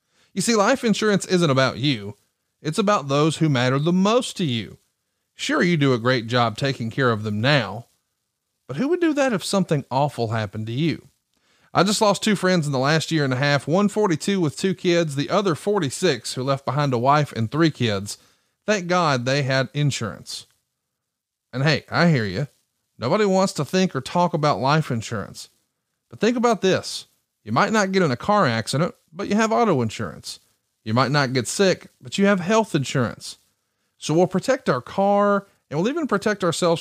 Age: 30-49